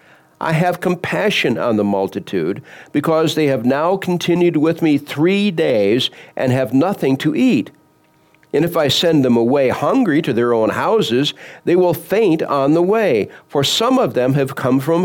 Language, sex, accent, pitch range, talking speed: English, male, American, 130-180 Hz, 175 wpm